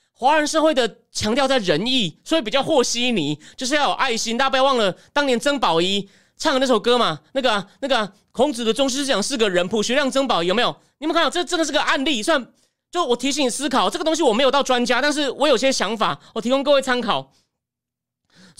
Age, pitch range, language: 30-49, 215-295 Hz, Chinese